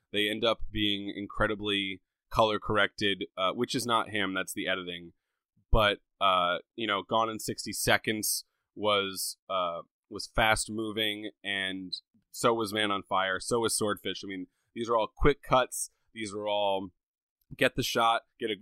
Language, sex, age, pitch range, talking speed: English, male, 20-39, 95-115 Hz, 155 wpm